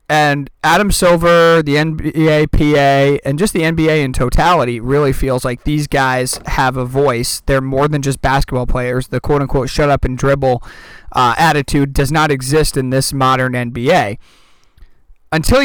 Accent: American